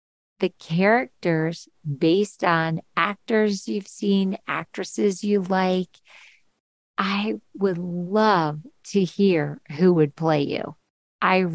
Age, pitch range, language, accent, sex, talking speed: 50-69, 160-205 Hz, English, American, female, 105 wpm